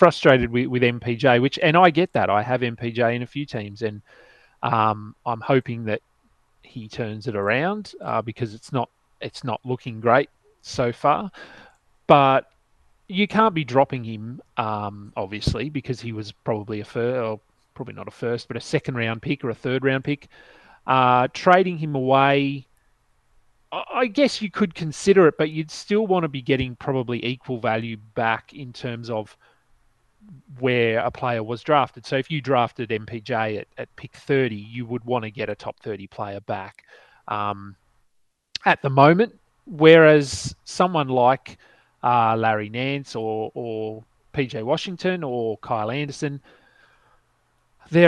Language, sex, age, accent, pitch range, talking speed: English, male, 30-49, Australian, 115-145 Hz, 165 wpm